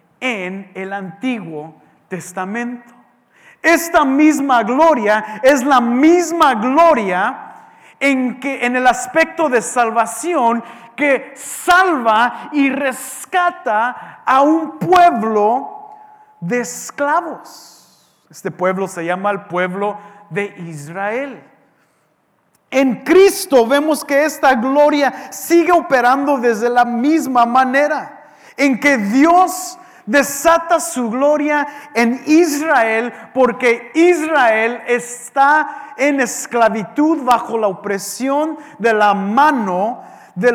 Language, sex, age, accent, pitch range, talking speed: English, male, 40-59, Mexican, 215-295 Hz, 100 wpm